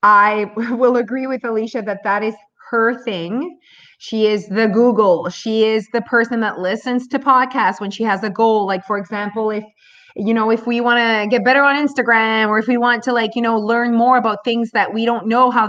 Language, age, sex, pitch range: English, 30-49, female, 210-250 Hz